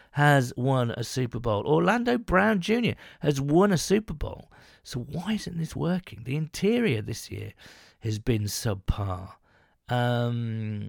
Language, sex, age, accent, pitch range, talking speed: English, male, 40-59, British, 125-175 Hz, 145 wpm